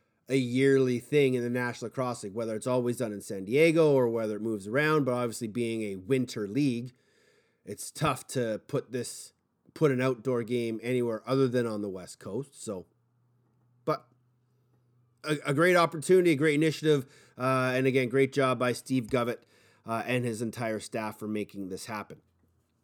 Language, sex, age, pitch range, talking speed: English, male, 30-49, 125-165 Hz, 180 wpm